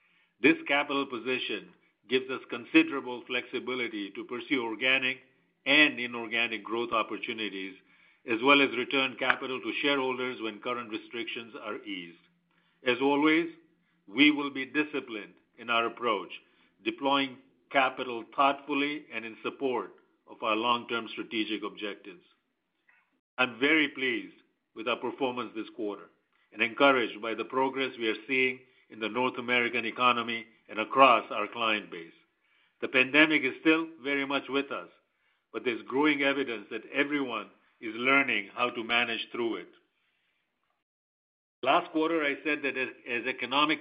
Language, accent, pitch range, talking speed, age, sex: English, Indian, 120-155 Hz, 140 wpm, 50-69, male